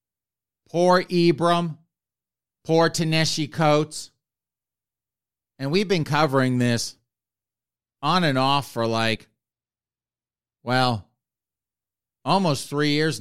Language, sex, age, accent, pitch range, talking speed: English, male, 50-69, American, 115-150 Hz, 85 wpm